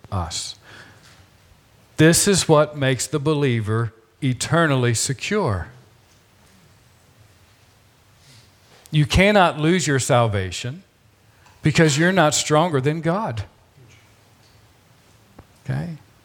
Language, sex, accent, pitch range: English, male, American, 110-150 Hz